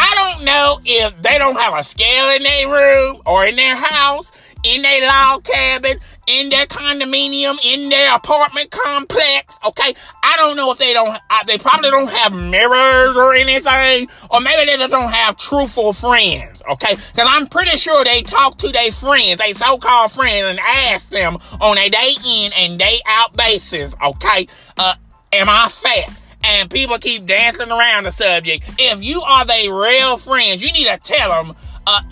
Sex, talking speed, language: male, 175 wpm, English